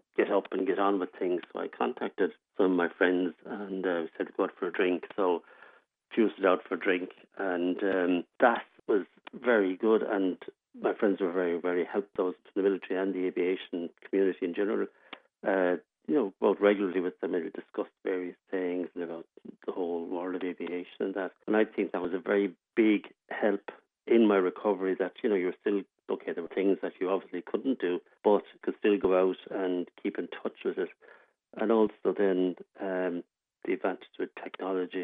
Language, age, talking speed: English, 60-79, 195 wpm